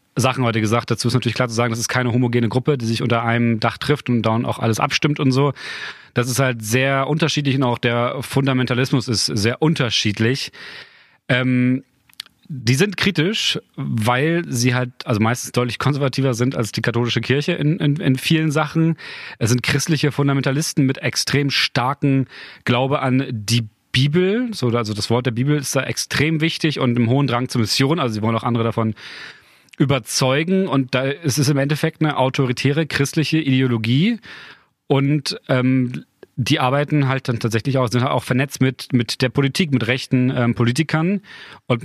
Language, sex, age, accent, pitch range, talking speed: German, male, 30-49, German, 120-145 Hz, 175 wpm